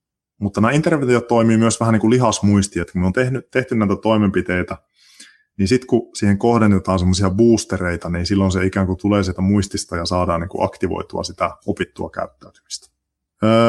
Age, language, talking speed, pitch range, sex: 20-39, Finnish, 165 wpm, 95-115 Hz, male